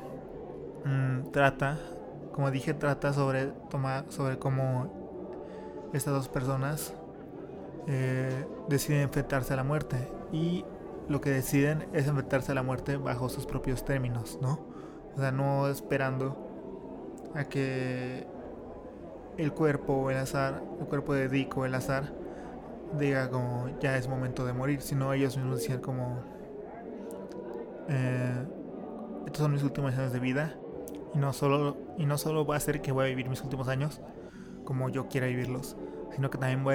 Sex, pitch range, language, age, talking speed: male, 130-145 Hz, Spanish, 20-39, 155 wpm